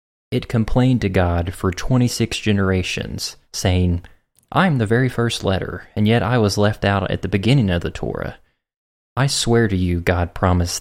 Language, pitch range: English, 90-105 Hz